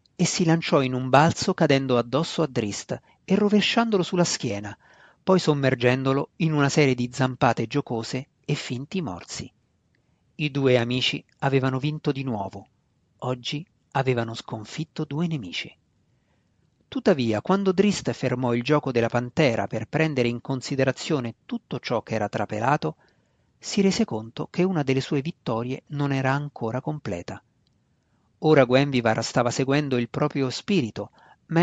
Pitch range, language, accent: 120-155 Hz, Italian, native